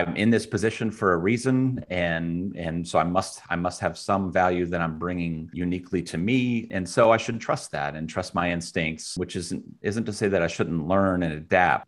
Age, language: 40-59, English